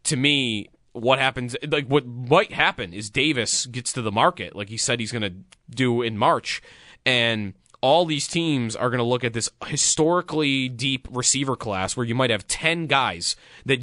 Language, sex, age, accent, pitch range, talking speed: English, male, 20-39, American, 115-150 Hz, 180 wpm